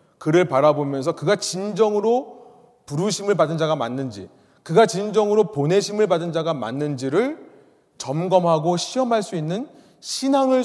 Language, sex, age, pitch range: Korean, male, 30-49, 145-215 Hz